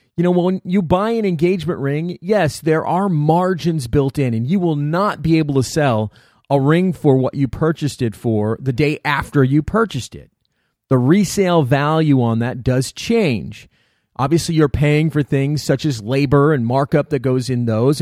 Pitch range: 130-170 Hz